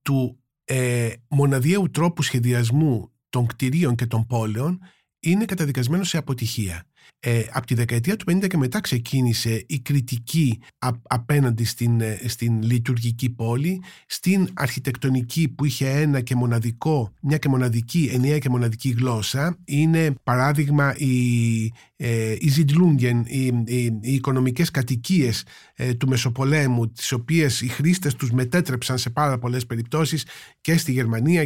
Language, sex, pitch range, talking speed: Greek, male, 125-165 Hz, 140 wpm